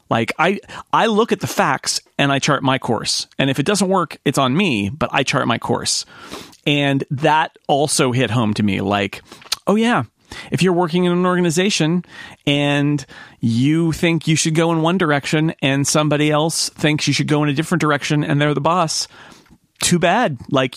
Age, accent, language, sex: 40-59, American, English, male